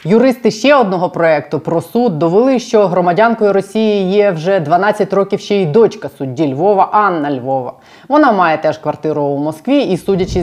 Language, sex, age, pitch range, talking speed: Ukrainian, female, 20-39, 160-215 Hz, 165 wpm